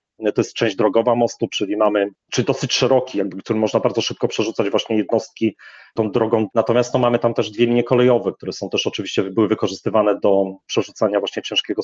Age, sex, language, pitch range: 30-49, male, Polish, 110-125 Hz